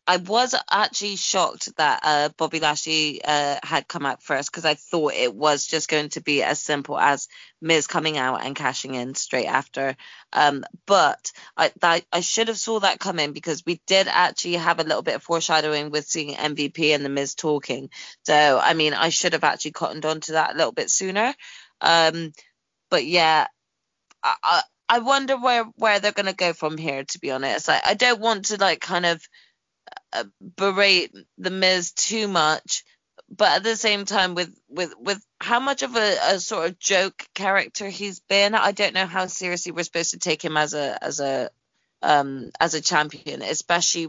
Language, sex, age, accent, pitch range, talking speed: English, female, 20-39, British, 150-190 Hz, 195 wpm